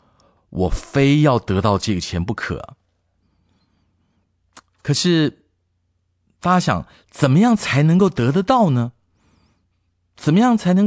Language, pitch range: Chinese, 90-145 Hz